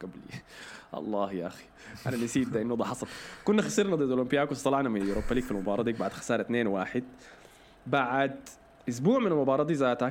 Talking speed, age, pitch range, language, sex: 180 wpm, 20-39, 110-145 Hz, Arabic, male